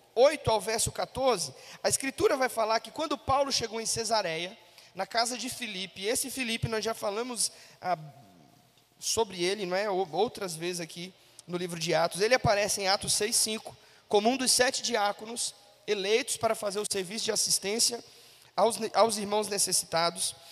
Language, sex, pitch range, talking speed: Portuguese, male, 180-240 Hz, 165 wpm